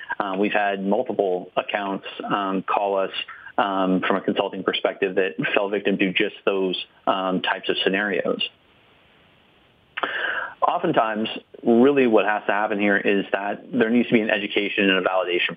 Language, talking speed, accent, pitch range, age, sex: English, 160 wpm, American, 95-105 Hz, 30-49, male